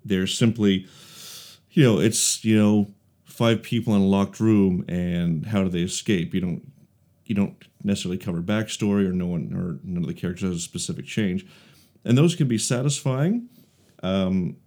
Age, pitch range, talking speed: 40-59, 95-145 Hz, 175 wpm